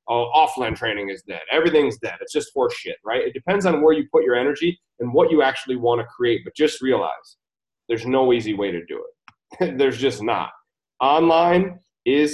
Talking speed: 210 wpm